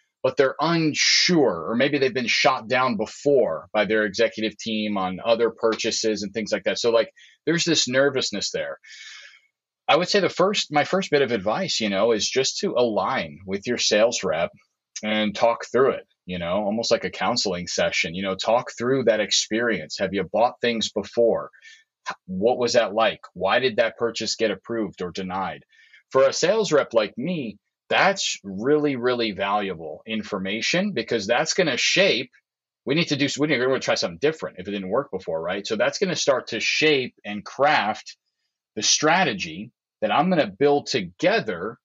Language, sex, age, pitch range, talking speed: English, male, 30-49, 110-155 Hz, 185 wpm